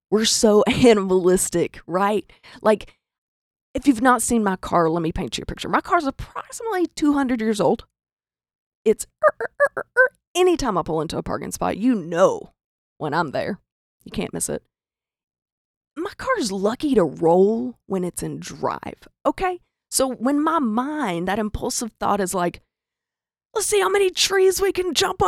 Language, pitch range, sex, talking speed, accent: English, 190-320 Hz, female, 175 wpm, American